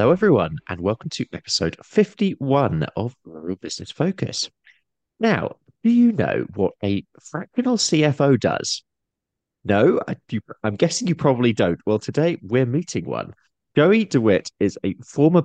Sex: male